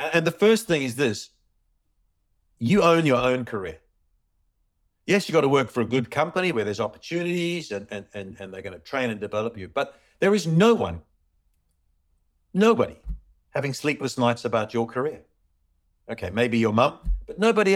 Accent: British